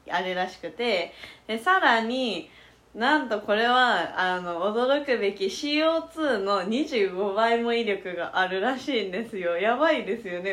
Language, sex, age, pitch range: Japanese, female, 20-39, 200-270 Hz